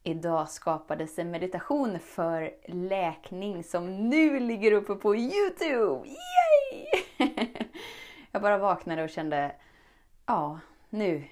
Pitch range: 165-220 Hz